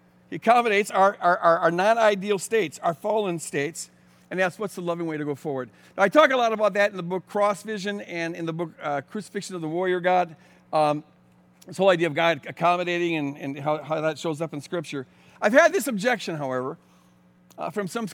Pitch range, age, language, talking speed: 145-225 Hz, 50-69, English, 215 wpm